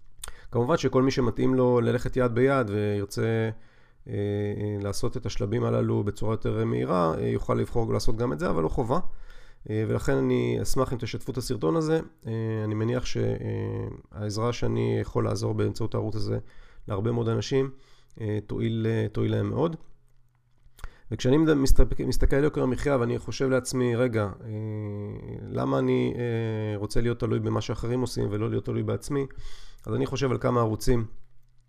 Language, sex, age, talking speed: Hebrew, male, 40-59, 140 wpm